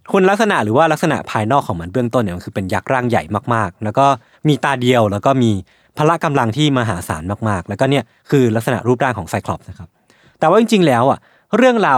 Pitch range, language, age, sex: 110-155 Hz, Thai, 20-39, male